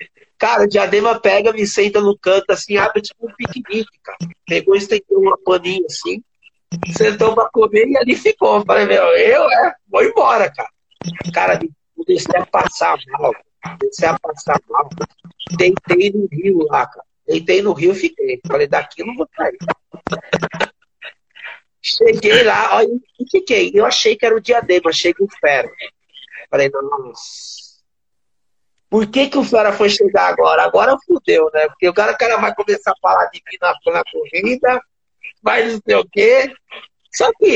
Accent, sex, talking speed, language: Brazilian, male, 170 wpm, Portuguese